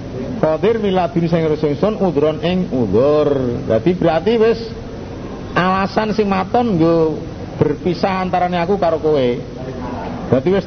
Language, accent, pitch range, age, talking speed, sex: Indonesian, native, 135-185 Hz, 50-69, 125 wpm, male